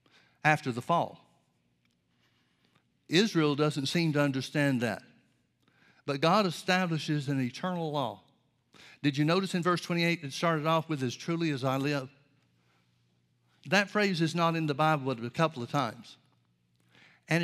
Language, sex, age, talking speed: English, male, 60-79, 150 wpm